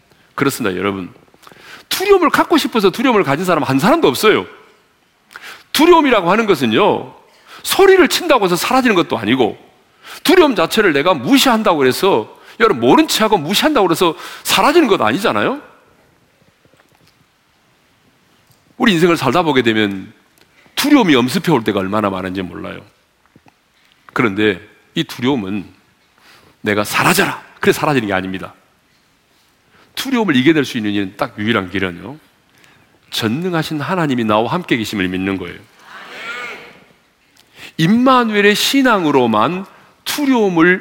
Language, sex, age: Korean, male, 40-59